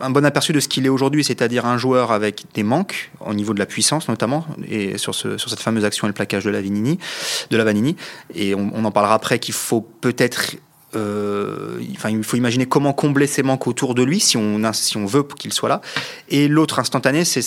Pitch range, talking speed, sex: 110-140 Hz, 225 wpm, male